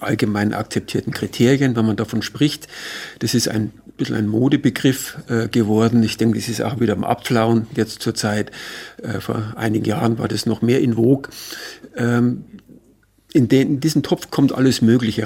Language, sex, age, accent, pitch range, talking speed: German, male, 50-69, German, 110-130 Hz, 175 wpm